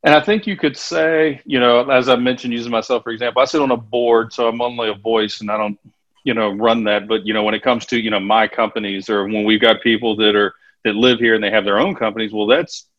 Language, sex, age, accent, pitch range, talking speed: English, male, 40-59, American, 110-135 Hz, 280 wpm